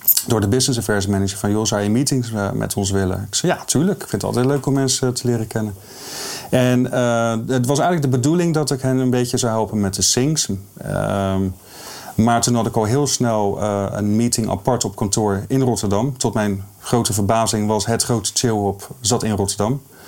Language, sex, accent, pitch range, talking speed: Dutch, male, Dutch, 100-125 Hz, 210 wpm